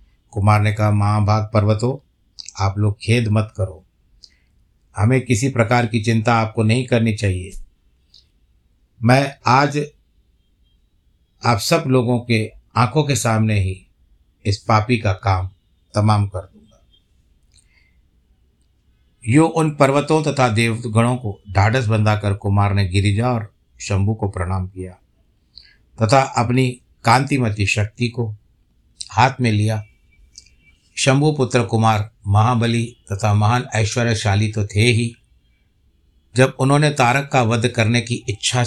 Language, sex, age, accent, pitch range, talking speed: Hindi, male, 60-79, native, 95-120 Hz, 125 wpm